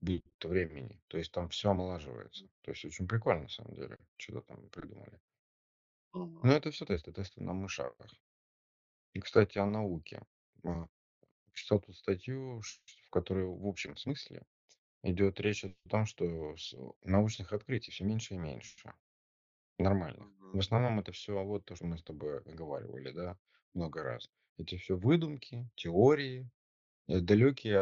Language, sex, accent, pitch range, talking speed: Russian, male, native, 85-105 Hz, 145 wpm